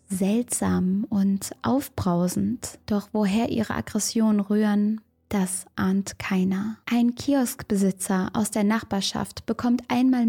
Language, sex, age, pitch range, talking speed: German, female, 20-39, 190-235 Hz, 105 wpm